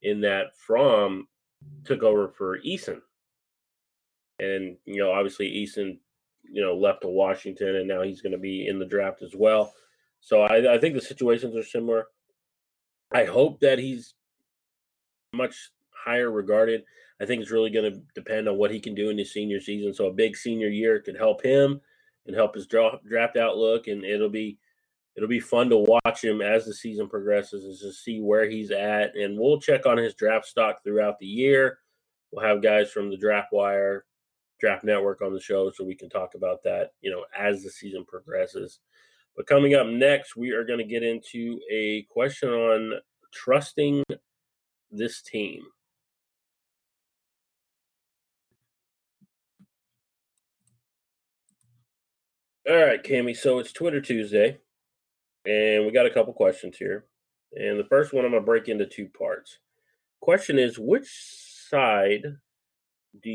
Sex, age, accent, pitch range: male, 30-49, American, 105-130 Hz